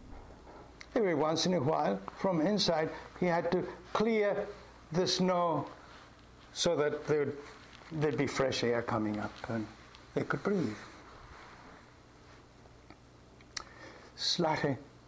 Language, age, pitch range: English, 60-79, 120-175 Hz